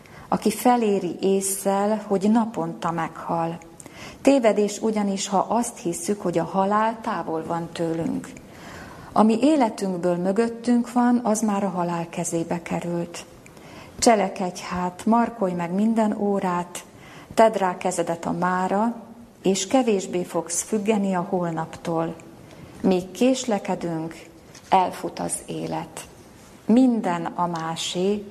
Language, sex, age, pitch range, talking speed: Hungarian, female, 30-49, 170-215 Hz, 110 wpm